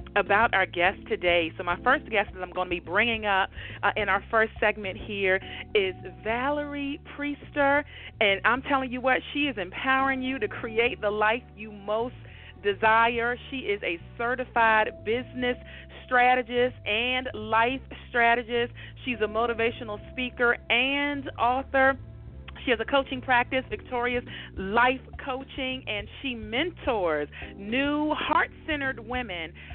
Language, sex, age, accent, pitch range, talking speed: English, female, 40-59, American, 205-265 Hz, 140 wpm